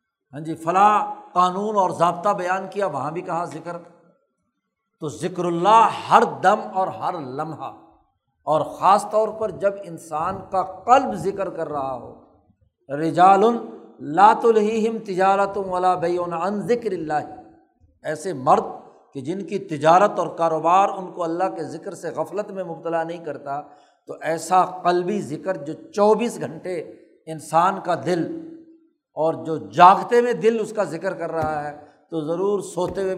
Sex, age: male, 60-79